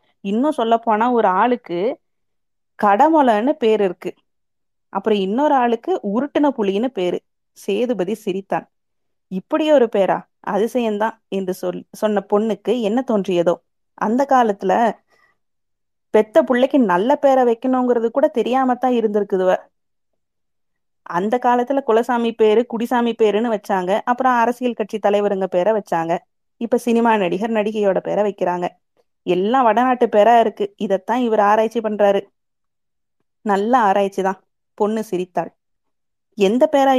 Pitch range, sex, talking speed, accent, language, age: 195-240 Hz, female, 110 wpm, native, Tamil, 20-39